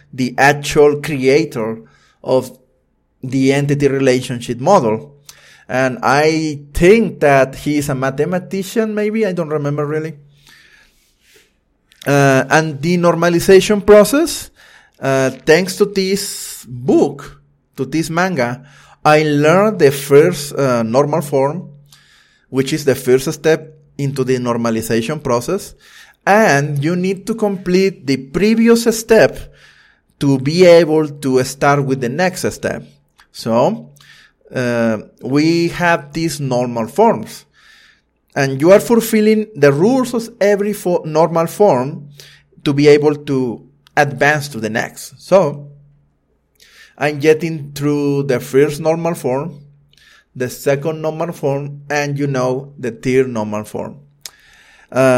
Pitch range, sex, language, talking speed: 135-170 Hz, male, English, 120 wpm